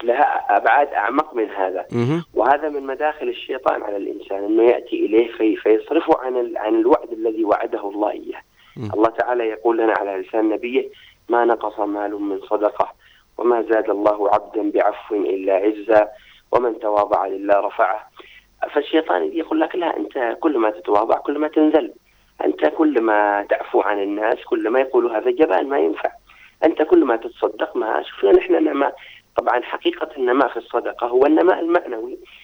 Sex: male